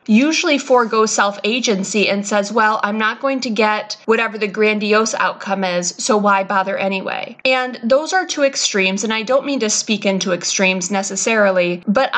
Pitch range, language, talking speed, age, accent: 200-250 Hz, English, 170 wpm, 20-39, American